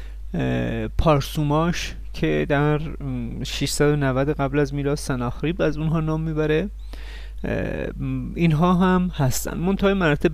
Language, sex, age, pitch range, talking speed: Persian, male, 30-49, 125-155 Hz, 100 wpm